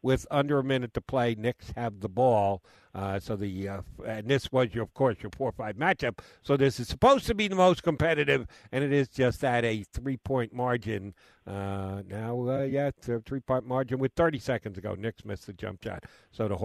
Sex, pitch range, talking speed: male, 120-185 Hz, 210 wpm